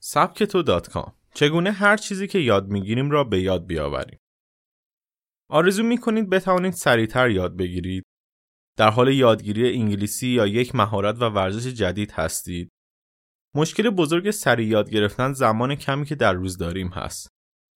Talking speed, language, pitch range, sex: 140 wpm, Persian, 100-140 Hz, male